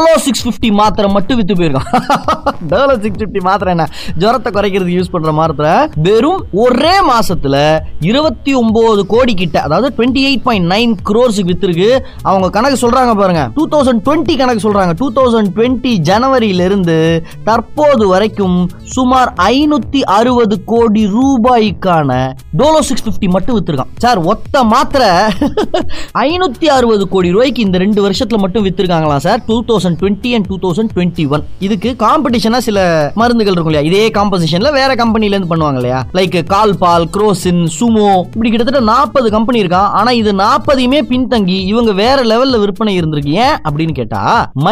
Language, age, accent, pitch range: Tamil, 20-39, native, 180-250 Hz